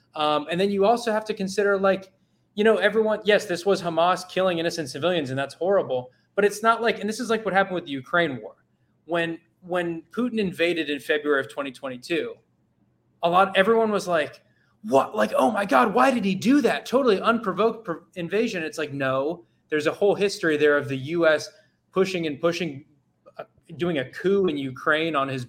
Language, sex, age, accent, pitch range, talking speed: English, male, 20-39, American, 145-195 Hz, 195 wpm